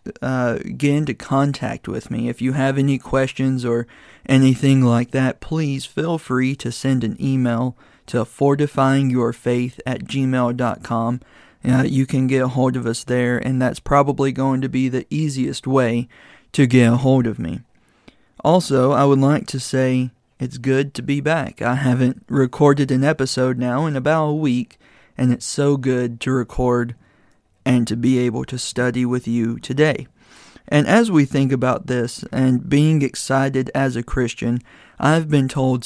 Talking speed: 165 wpm